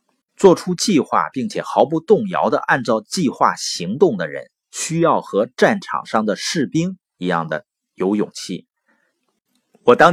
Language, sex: Chinese, male